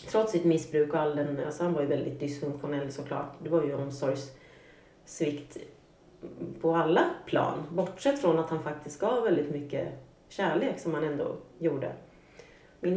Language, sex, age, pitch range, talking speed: Swedish, female, 30-49, 150-185 Hz, 155 wpm